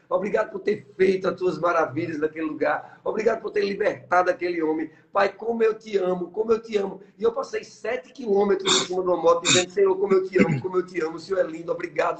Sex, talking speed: male, 240 wpm